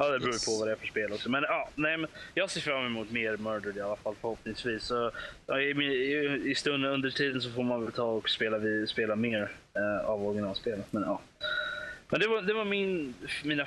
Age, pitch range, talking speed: 20-39, 110-135 Hz, 235 wpm